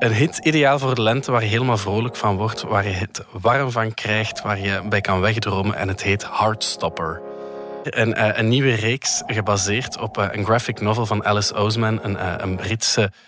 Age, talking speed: 20-39, 190 wpm